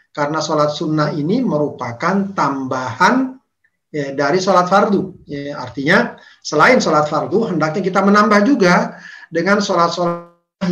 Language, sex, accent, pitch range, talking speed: Indonesian, male, native, 145-195 Hz, 120 wpm